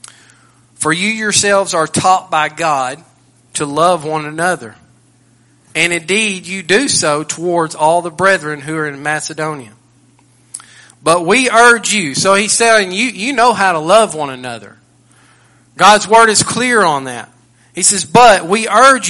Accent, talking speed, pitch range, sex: American, 155 wpm, 145-205 Hz, male